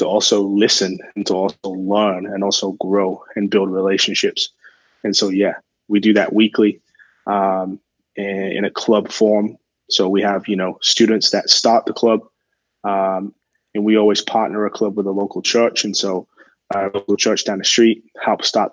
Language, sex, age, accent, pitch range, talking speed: English, male, 20-39, American, 100-110 Hz, 180 wpm